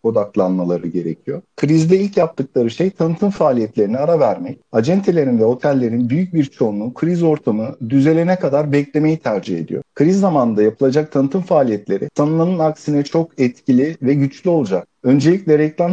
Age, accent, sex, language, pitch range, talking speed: 50-69, native, male, Turkish, 135-170 Hz, 140 wpm